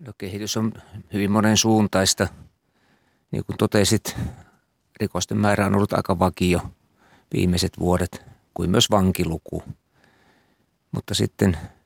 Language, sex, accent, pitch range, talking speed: Finnish, male, native, 90-110 Hz, 105 wpm